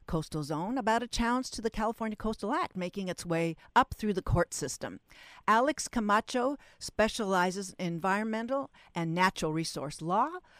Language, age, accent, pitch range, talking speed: English, 50-69, American, 160-215 Hz, 155 wpm